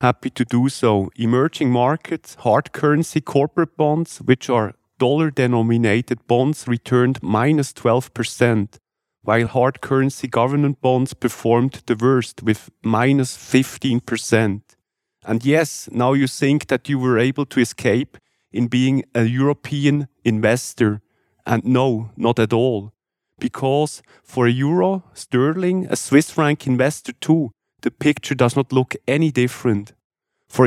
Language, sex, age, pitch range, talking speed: English, male, 40-59, 120-140 Hz, 130 wpm